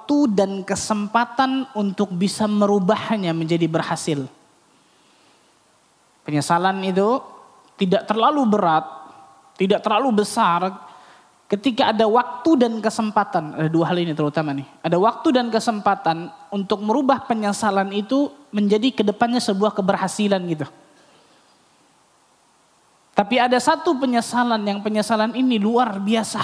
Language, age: Indonesian, 20-39